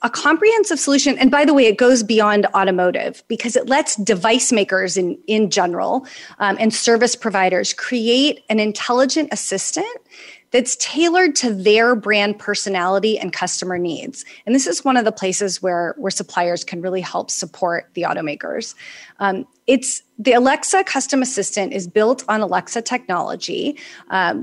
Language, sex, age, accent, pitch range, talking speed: English, female, 30-49, American, 200-260 Hz, 155 wpm